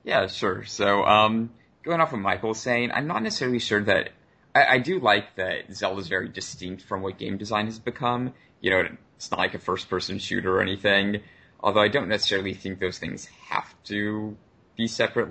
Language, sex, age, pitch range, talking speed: English, male, 30-49, 95-115 Hz, 195 wpm